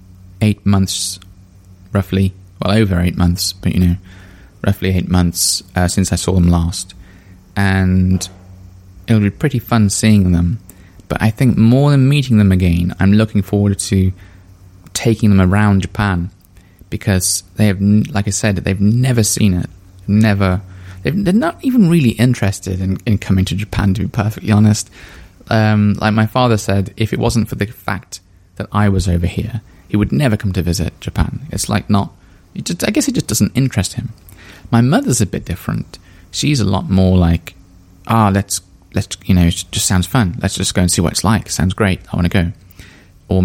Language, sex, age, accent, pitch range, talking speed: English, male, 20-39, British, 90-105 Hz, 190 wpm